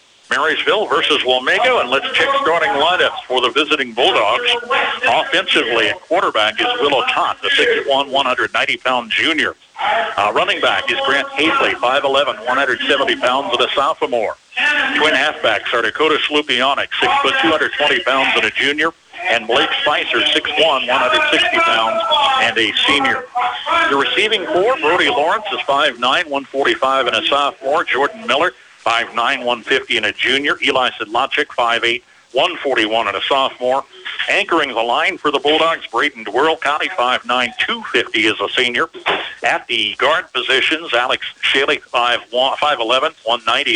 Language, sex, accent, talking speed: English, male, American, 140 wpm